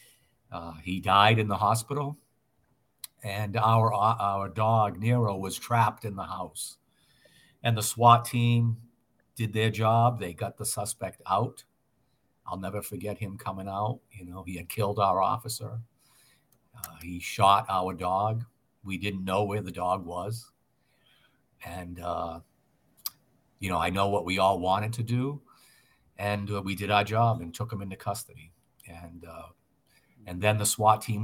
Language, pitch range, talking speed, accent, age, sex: English, 95-115 Hz, 160 wpm, American, 50-69, male